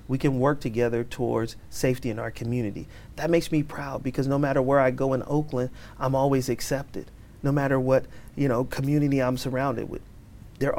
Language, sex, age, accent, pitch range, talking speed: English, male, 40-59, American, 125-150 Hz, 180 wpm